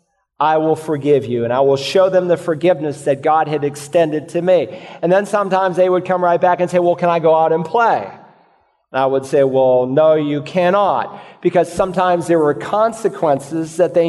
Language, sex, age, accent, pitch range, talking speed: English, male, 40-59, American, 160-200 Hz, 210 wpm